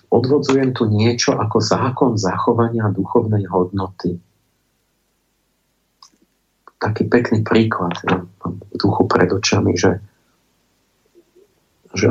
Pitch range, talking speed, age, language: 95-115 Hz, 90 wpm, 50-69, Slovak